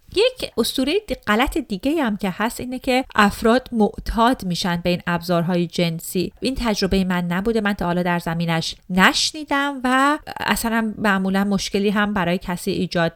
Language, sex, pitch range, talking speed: Persian, female, 180-215 Hz, 145 wpm